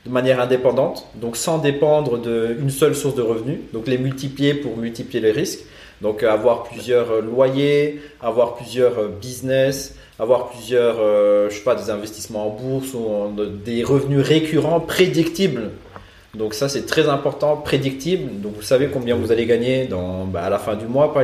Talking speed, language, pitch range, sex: 170 wpm, French, 110-140 Hz, male